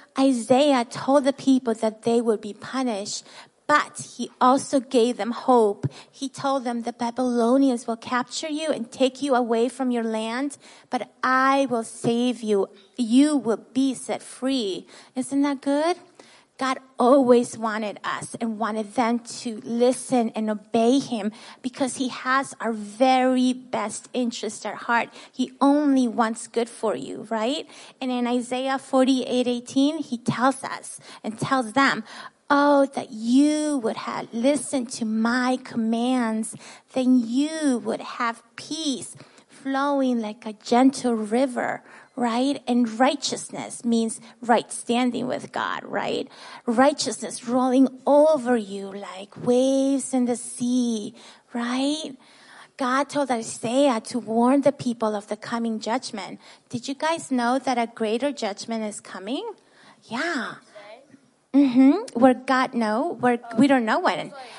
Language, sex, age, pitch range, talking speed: English, female, 30-49, 230-270 Hz, 140 wpm